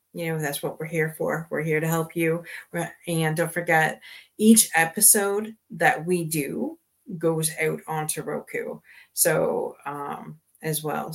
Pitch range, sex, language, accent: 155-195 Hz, female, English, American